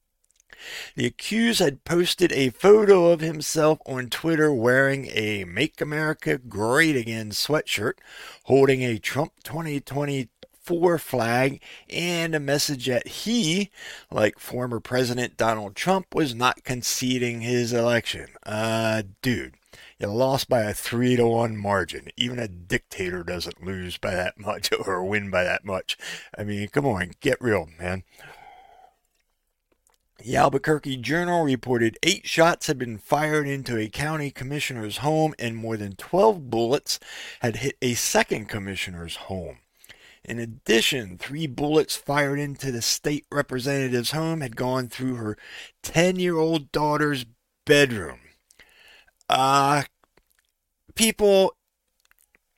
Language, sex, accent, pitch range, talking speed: English, male, American, 115-155 Hz, 125 wpm